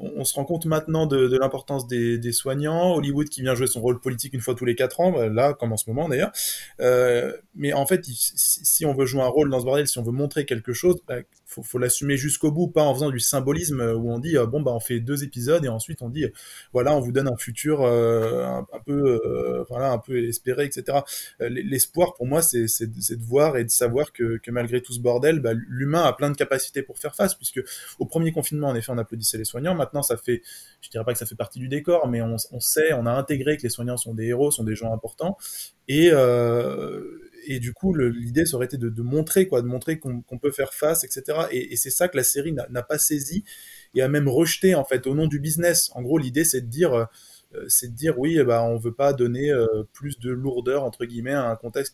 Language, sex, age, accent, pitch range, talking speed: French, male, 20-39, French, 120-150 Hz, 265 wpm